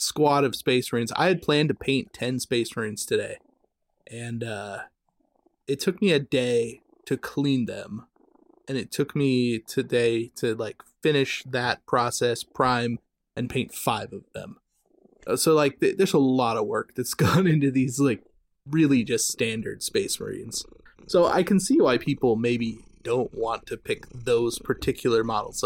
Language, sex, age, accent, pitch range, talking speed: English, male, 20-39, American, 120-150 Hz, 165 wpm